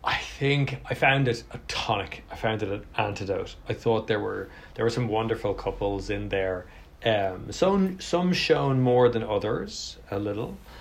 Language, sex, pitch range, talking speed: English, male, 100-125 Hz, 180 wpm